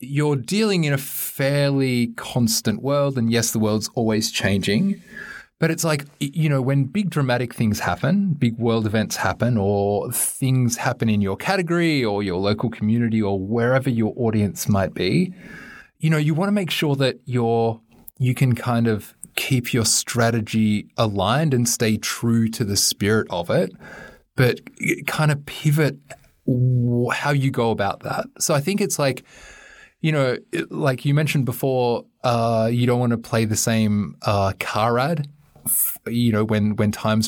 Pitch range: 110-145 Hz